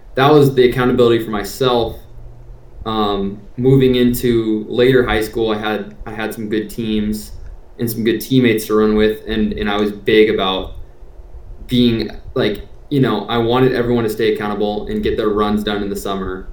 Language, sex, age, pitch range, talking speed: English, male, 20-39, 100-115 Hz, 180 wpm